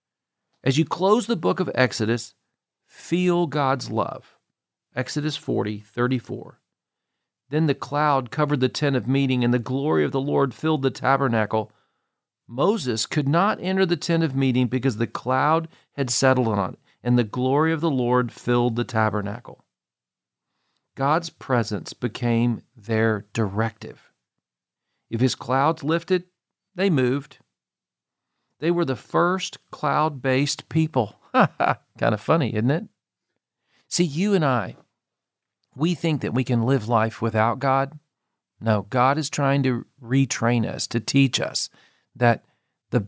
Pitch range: 115-150 Hz